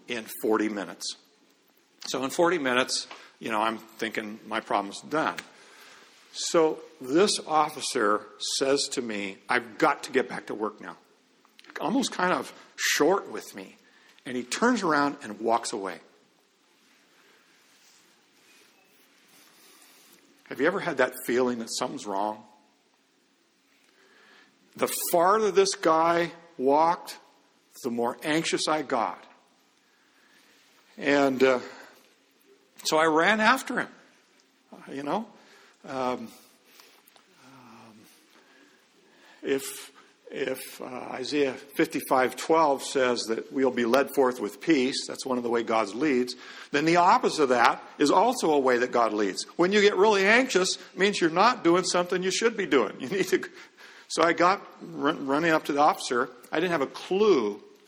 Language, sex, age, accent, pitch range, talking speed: English, male, 50-69, American, 120-185 Hz, 140 wpm